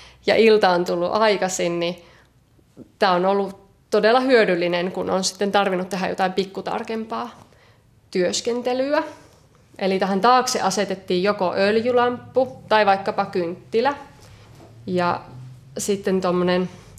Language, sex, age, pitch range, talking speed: Finnish, female, 20-39, 175-210 Hz, 110 wpm